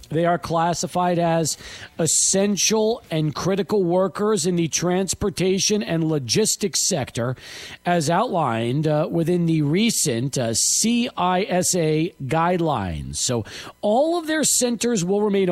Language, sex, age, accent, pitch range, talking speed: English, male, 40-59, American, 120-200 Hz, 115 wpm